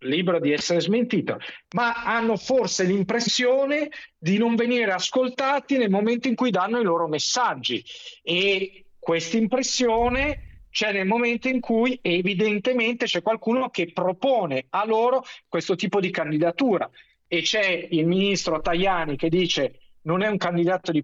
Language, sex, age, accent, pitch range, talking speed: Italian, male, 40-59, native, 165-230 Hz, 145 wpm